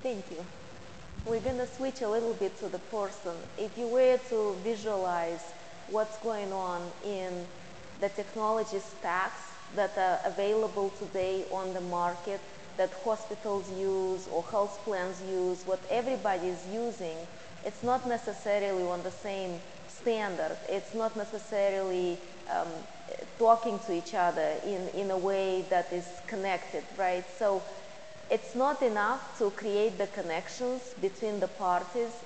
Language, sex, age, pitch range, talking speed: English, female, 20-39, 180-220 Hz, 140 wpm